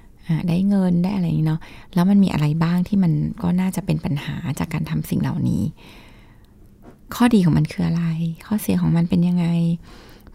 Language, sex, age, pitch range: Thai, female, 20-39, 165-210 Hz